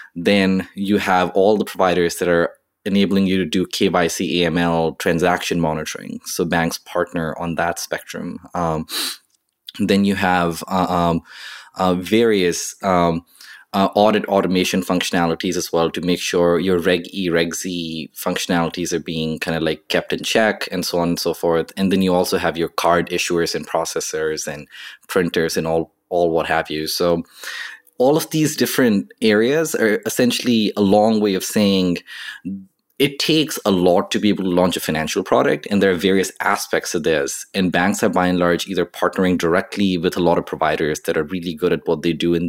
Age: 20-39